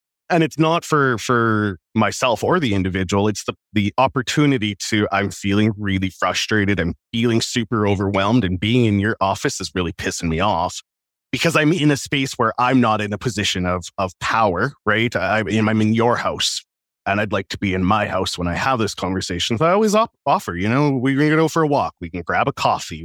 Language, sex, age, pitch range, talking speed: English, male, 30-49, 95-135 Hz, 215 wpm